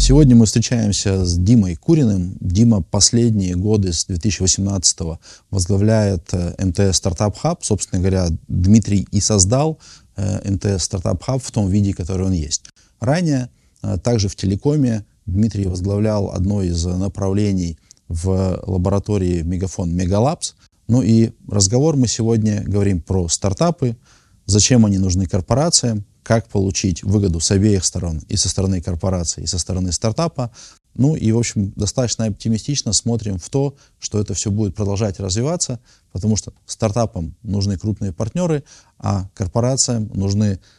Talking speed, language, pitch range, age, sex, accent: 135 wpm, Russian, 95-115 Hz, 20-39, male, native